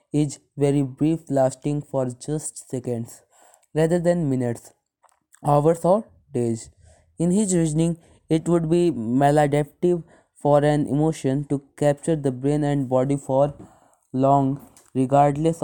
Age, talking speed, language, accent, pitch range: 20-39, 125 wpm, English, Indian, 130-150 Hz